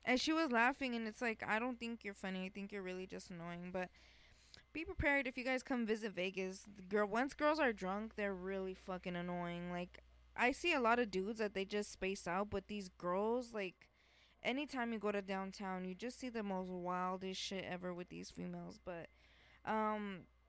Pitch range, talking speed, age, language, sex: 190-240 Hz, 210 wpm, 20-39, English, female